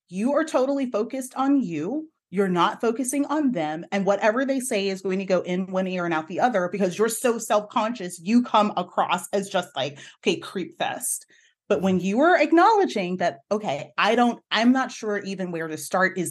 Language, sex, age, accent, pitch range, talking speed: English, female, 30-49, American, 180-245 Hz, 210 wpm